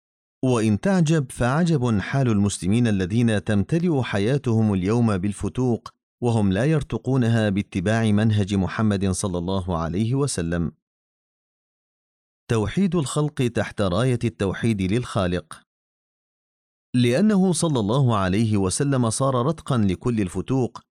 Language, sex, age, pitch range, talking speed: Arabic, male, 40-59, 100-125 Hz, 100 wpm